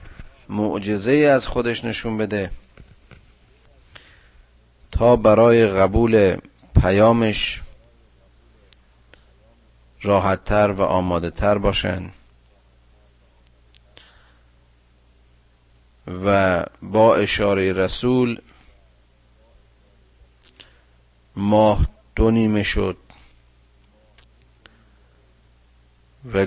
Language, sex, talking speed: Persian, male, 50 wpm